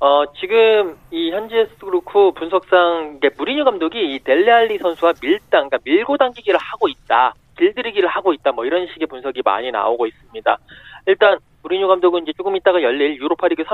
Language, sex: Korean, male